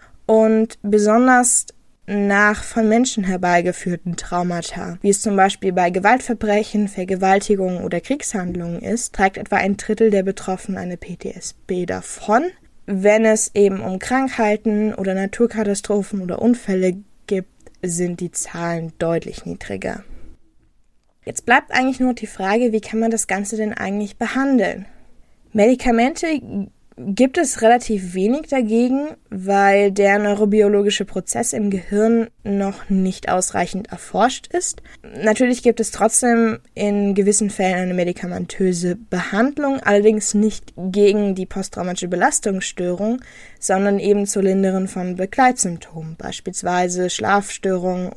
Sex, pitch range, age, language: female, 185-220 Hz, 20-39, German